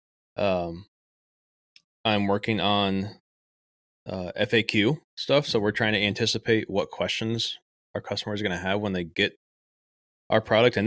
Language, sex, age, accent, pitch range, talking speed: English, male, 20-39, American, 95-115 Hz, 145 wpm